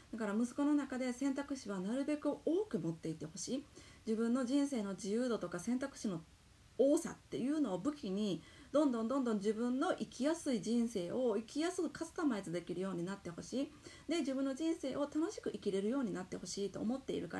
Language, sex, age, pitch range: Japanese, female, 30-49, 190-275 Hz